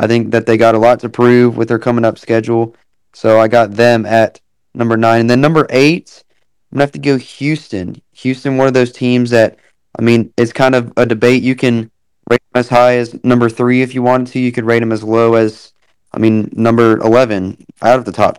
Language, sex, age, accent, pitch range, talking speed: English, male, 20-39, American, 110-125 Hz, 235 wpm